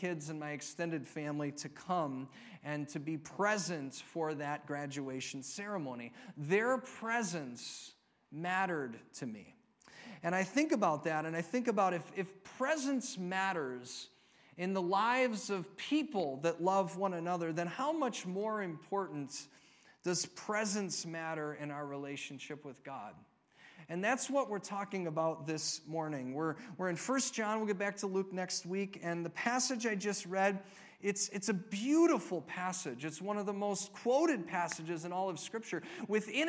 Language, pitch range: English, 170-230 Hz